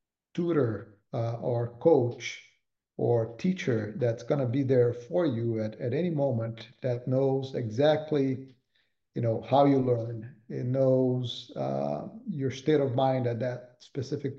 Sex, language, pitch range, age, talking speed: male, English, 115-140 Hz, 50-69, 145 wpm